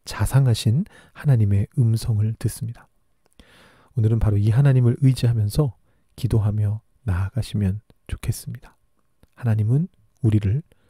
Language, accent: English, Korean